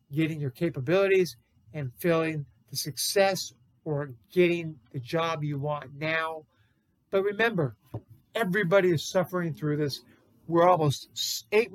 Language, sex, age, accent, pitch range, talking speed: English, male, 60-79, American, 140-185 Hz, 125 wpm